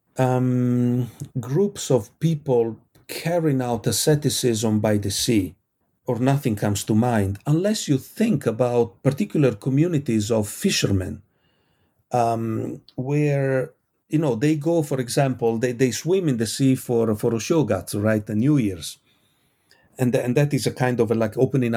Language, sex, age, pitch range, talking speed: English, male, 40-59, 105-140 Hz, 150 wpm